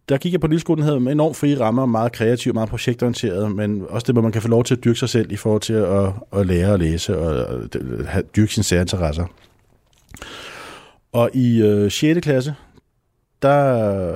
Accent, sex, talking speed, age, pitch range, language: native, male, 195 wpm, 30-49, 105-125 Hz, Danish